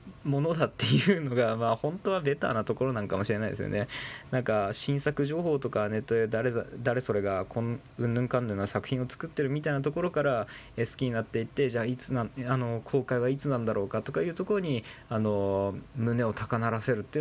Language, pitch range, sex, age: Japanese, 110-140 Hz, male, 20-39